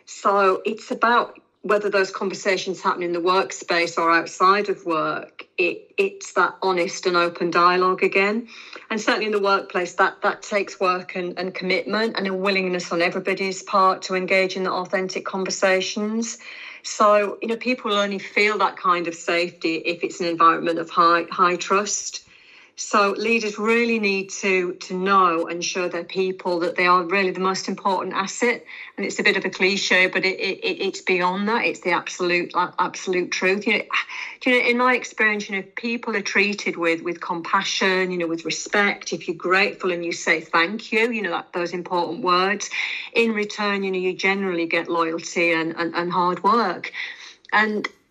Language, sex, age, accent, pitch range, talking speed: English, female, 40-59, British, 180-210 Hz, 185 wpm